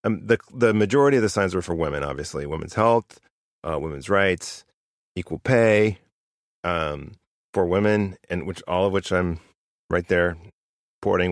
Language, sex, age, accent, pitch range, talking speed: English, male, 30-49, American, 85-100 Hz, 160 wpm